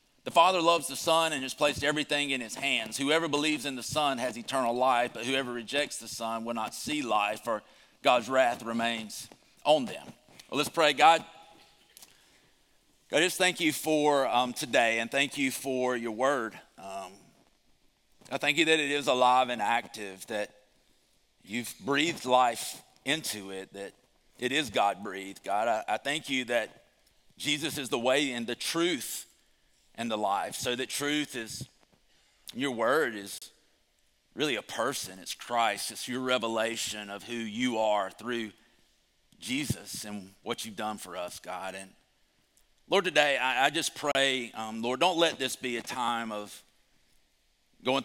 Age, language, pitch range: 40-59, English, 105-140 Hz